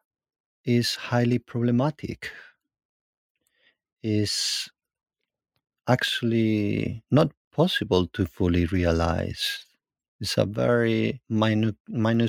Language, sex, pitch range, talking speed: English, male, 100-125 Hz, 70 wpm